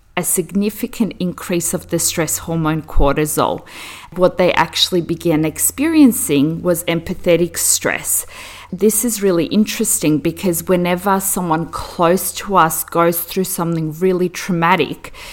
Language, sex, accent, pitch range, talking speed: English, female, Australian, 165-205 Hz, 120 wpm